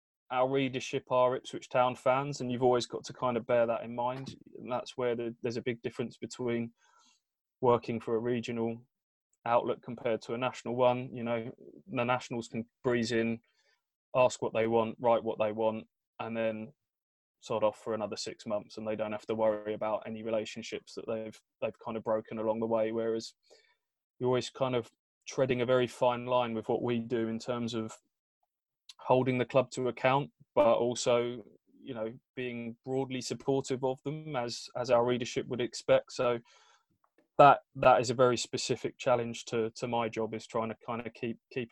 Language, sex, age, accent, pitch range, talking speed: English, male, 20-39, British, 115-125 Hz, 190 wpm